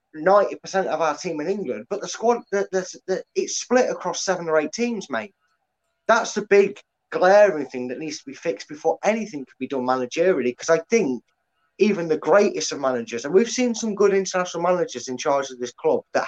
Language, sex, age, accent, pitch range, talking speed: English, male, 20-39, British, 140-200 Hz, 205 wpm